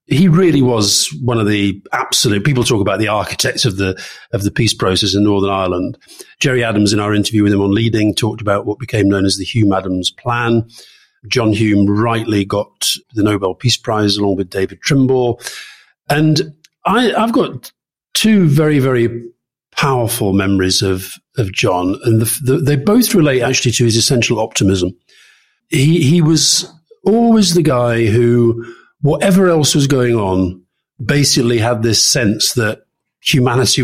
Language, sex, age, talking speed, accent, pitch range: English, male, 50-69, 165 wpm, British, 105-140 Hz